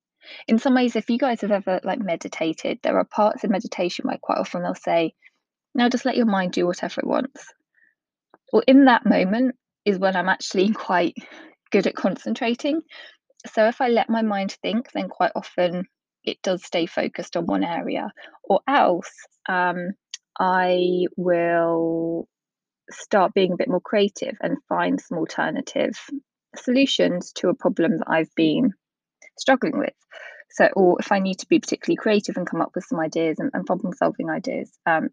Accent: British